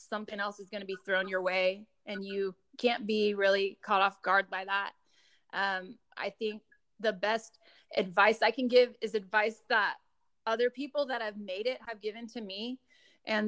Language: English